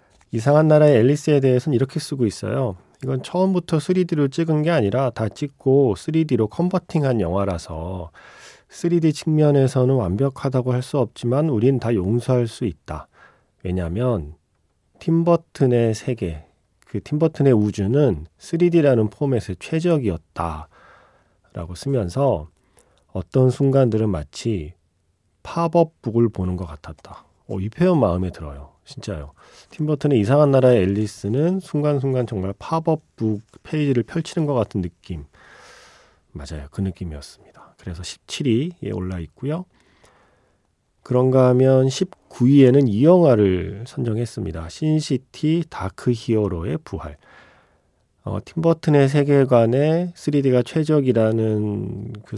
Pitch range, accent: 100-150 Hz, native